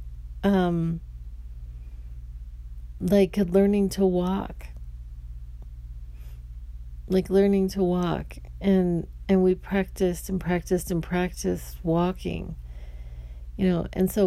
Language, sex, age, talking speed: English, female, 40-59, 95 wpm